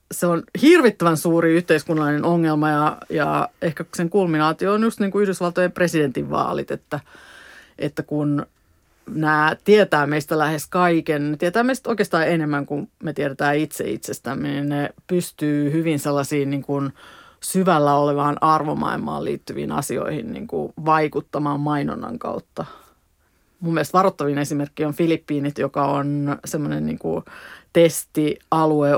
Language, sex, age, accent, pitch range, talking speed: Finnish, female, 30-49, native, 145-175 Hz, 120 wpm